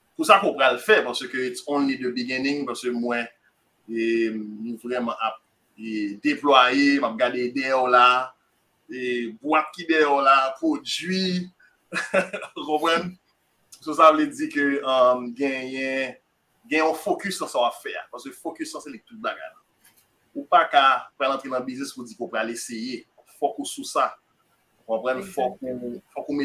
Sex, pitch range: male, 125-165 Hz